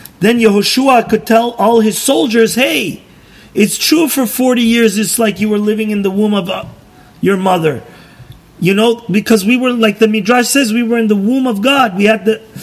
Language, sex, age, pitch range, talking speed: English, male, 40-59, 185-230 Hz, 205 wpm